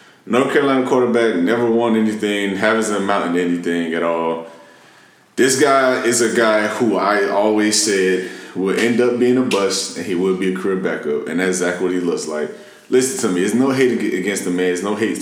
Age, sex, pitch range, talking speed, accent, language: 20-39, male, 95-120 Hz, 205 wpm, American, English